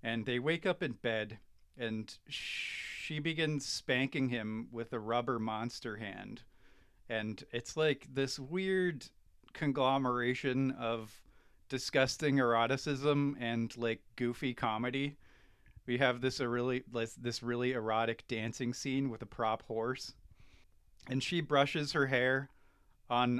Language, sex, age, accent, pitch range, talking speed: English, male, 30-49, American, 115-140 Hz, 125 wpm